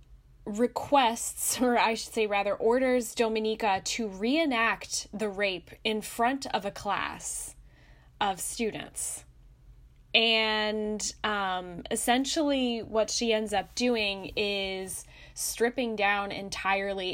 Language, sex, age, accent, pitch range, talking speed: English, female, 10-29, American, 195-235 Hz, 110 wpm